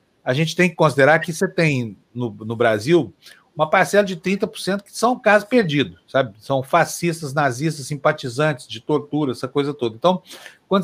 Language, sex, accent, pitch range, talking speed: Portuguese, male, Brazilian, 130-170 Hz, 170 wpm